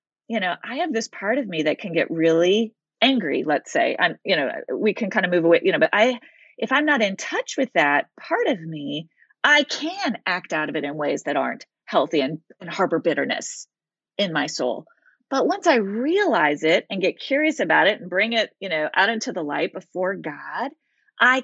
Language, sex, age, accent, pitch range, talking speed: English, female, 30-49, American, 195-290 Hz, 220 wpm